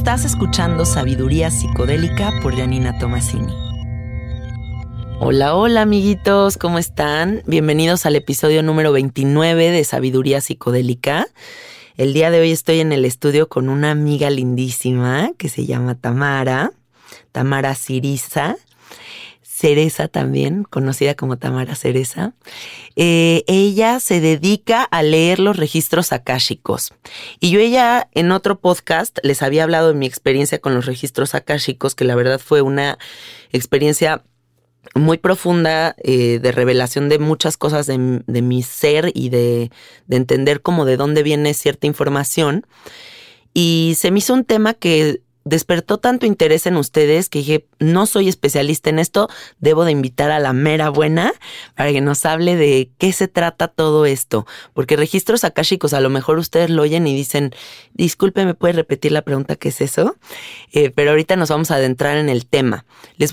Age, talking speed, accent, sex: 30-49, 155 wpm, Mexican, female